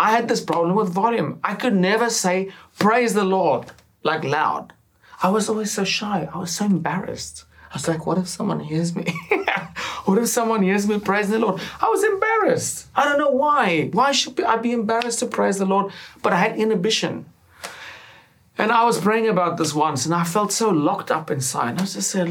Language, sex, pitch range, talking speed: English, male, 155-210 Hz, 205 wpm